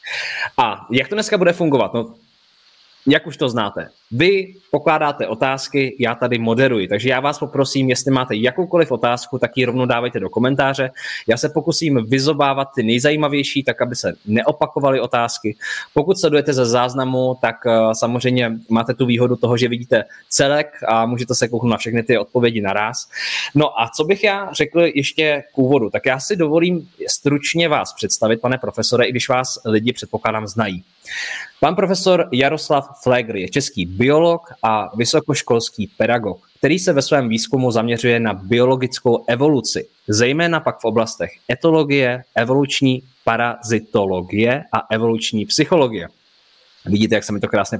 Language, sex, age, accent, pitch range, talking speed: Czech, male, 20-39, native, 115-150 Hz, 155 wpm